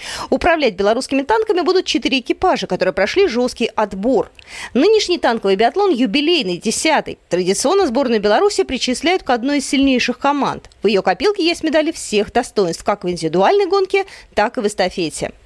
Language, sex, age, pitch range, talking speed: Russian, female, 30-49, 210-345 Hz, 150 wpm